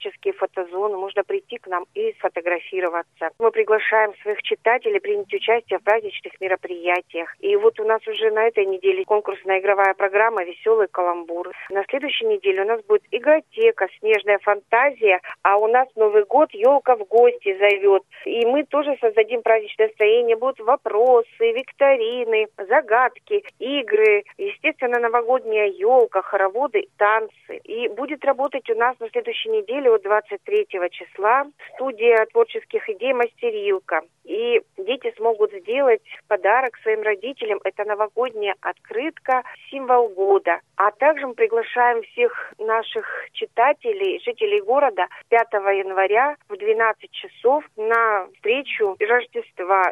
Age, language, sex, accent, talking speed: 40-59, Russian, female, native, 125 wpm